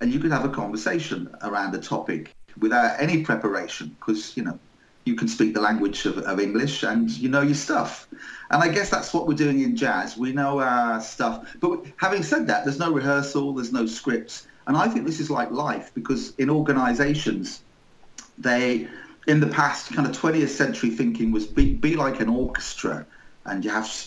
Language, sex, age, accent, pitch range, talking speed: English, male, 40-59, British, 115-160 Hz, 195 wpm